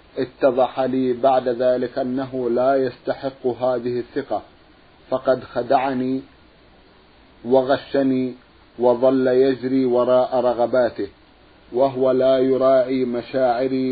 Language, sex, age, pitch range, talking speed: Arabic, male, 50-69, 125-135 Hz, 85 wpm